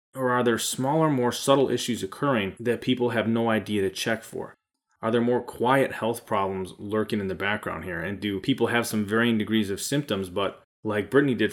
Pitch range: 100-125 Hz